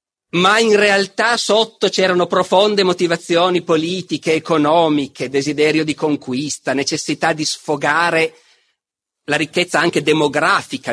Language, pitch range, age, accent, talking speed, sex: Italian, 145-215 Hz, 40-59, native, 105 wpm, male